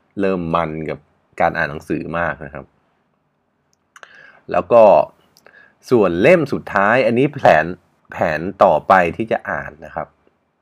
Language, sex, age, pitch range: Thai, male, 20-39, 85-115 Hz